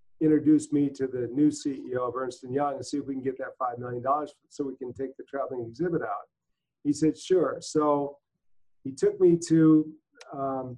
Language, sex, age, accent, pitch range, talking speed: English, male, 50-69, American, 130-150 Hz, 200 wpm